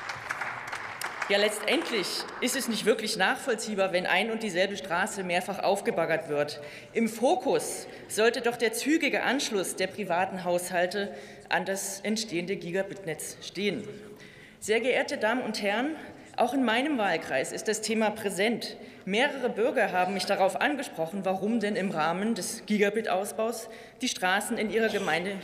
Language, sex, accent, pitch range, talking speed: German, female, German, 185-235 Hz, 140 wpm